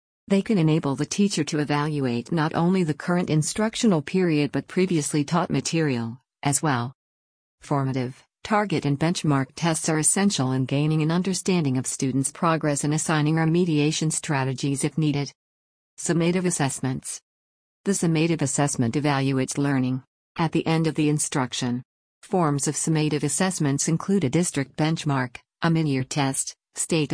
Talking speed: 140 wpm